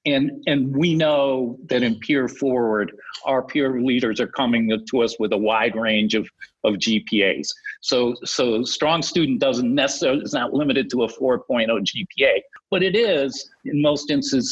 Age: 50-69